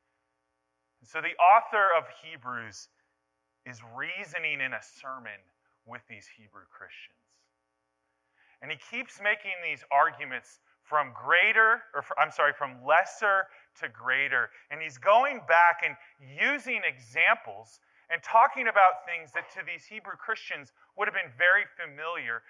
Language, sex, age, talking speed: English, male, 30-49, 135 wpm